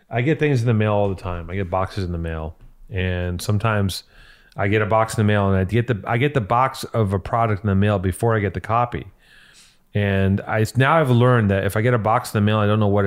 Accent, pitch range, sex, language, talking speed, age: American, 100-125 Hz, male, English, 280 wpm, 30-49